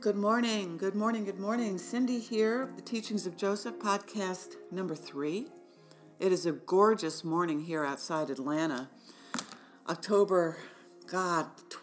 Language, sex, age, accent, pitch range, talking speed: English, female, 40-59, American, 160-200 Hz, 125 wpm